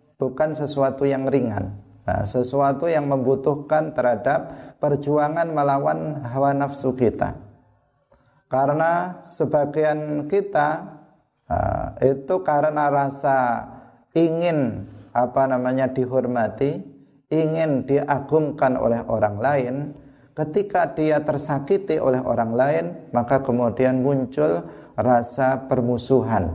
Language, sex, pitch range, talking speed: Indonesian, male, 120-150 Hz, 95 wpm